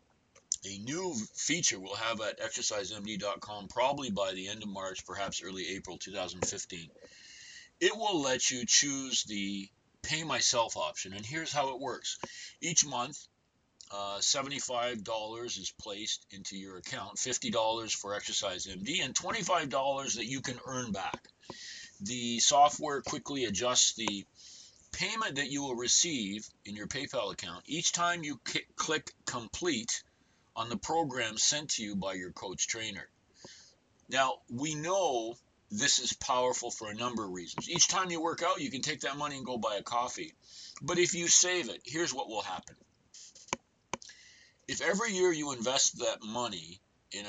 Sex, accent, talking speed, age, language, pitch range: male, American, 155 wpm, 40-59, English, 105-150 Hz